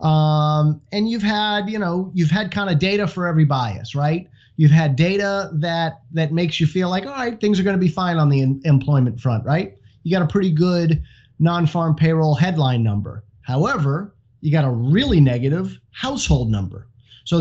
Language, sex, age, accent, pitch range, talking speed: English, male, 30-49, American, 140-175 Hz, 195 wpm